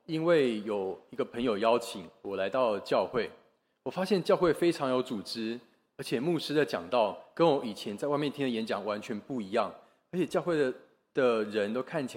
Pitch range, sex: 105-145 Hz, male